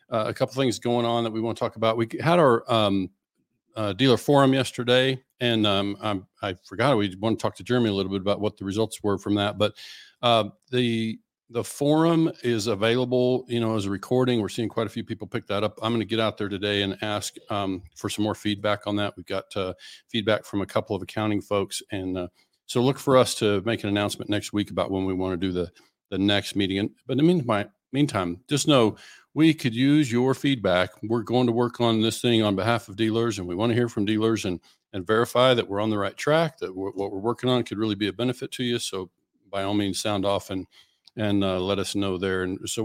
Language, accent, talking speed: English, American, 250 wpm